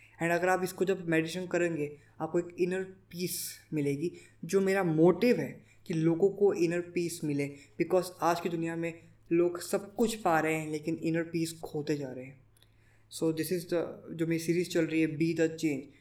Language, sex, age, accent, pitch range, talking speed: Hindi, female, 20-39, native, 140-180 Hz, 200 wpm